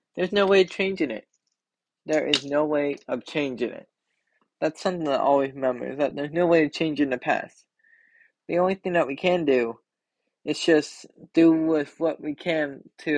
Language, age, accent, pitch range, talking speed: English, 20-39, American, 135-165 Hz, 195 wpm